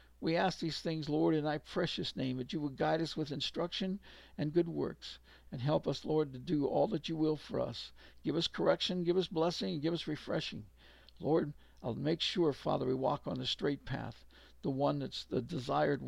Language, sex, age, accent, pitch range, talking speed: English, male, 60-79, American, 125-155 Hz, 215 wpm